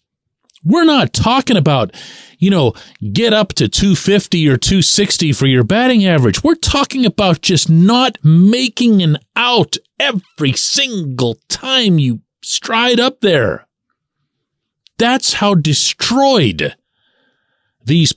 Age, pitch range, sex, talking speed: 40-59, 145-245 Hz, male, 115 wpm